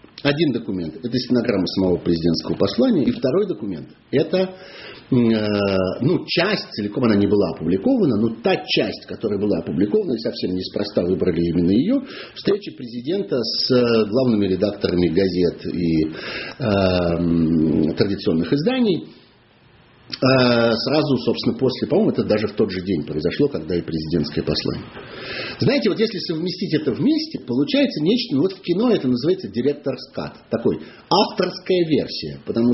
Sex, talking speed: male, 135 wpm